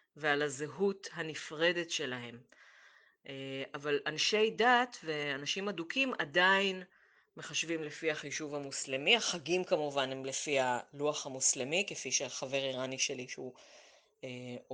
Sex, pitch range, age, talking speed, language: female, 145-200 Hz, 30-49, 100 wpm, Hebrew